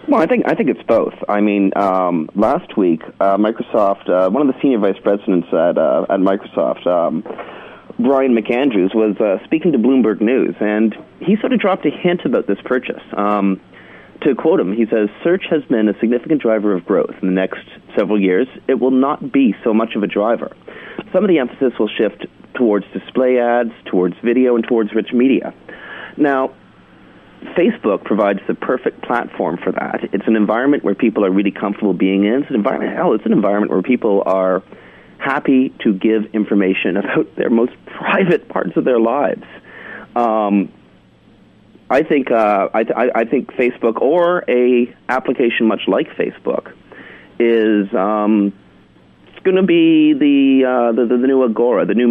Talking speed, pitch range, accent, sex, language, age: 180 wpm, 100-130 Hz, American, male, English, 30-49